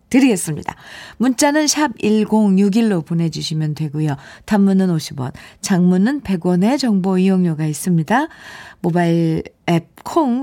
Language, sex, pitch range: Korean, female, 175-270 Hz